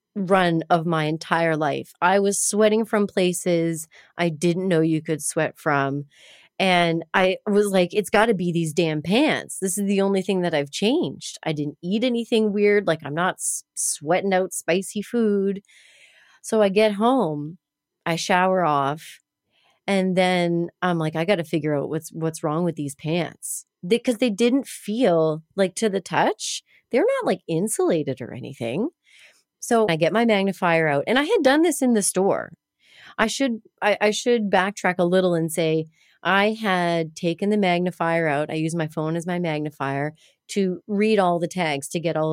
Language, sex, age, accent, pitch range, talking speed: English, female, 30-49, American, 160-210 Hz, 185 wpm